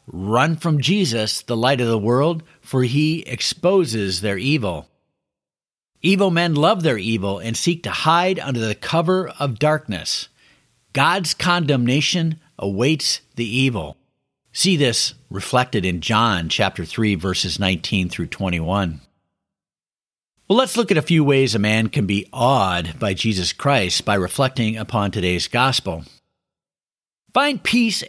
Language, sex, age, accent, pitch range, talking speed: English, male, 50-69, American, 110-165 Hz, 140 wpm